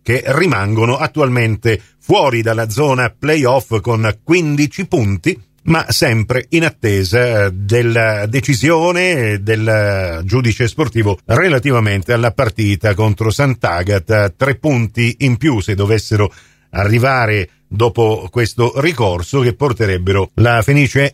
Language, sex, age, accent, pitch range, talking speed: Italian, male, 50-69, native, 110-155 Hz, 110 wpm